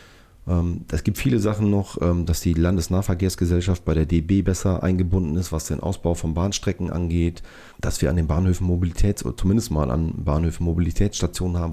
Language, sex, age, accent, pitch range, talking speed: German, male, 30-49, German, 85-95 Hz, 170 wpm